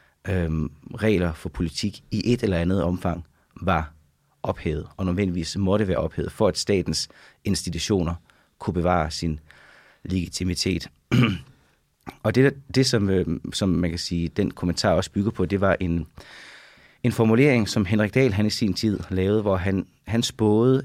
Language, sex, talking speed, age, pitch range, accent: Danish, male, 155 wpm, 30-49, 90-110 Hz, native